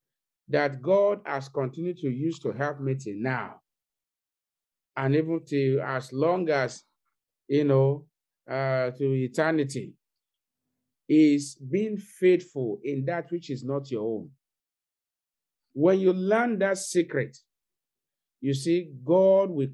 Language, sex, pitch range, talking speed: English, male, 130-180 Hz, 125 wpm